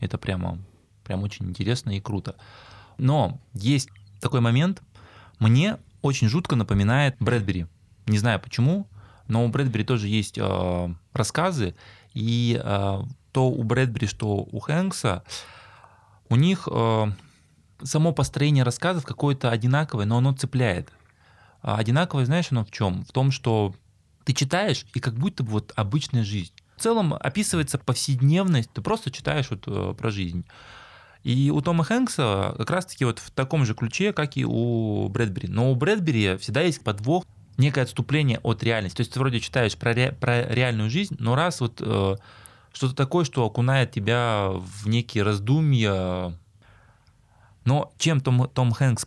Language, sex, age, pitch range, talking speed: Russian, male, 20-39, 105-135 Hz, 155 wpm